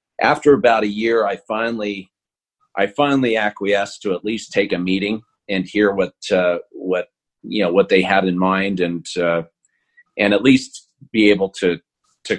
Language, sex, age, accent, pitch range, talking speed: English, male, 40-59, American, 90-110 Hz, 175 wpm